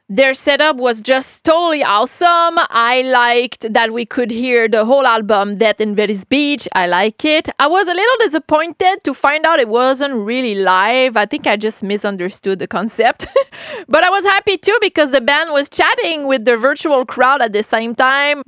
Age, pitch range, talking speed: 30-49, 215-300 Hz, 190 wpm